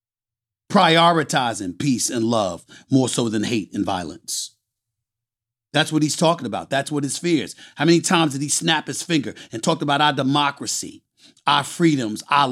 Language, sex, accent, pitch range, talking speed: English, male, American, 115-140 Hz, 170 wpm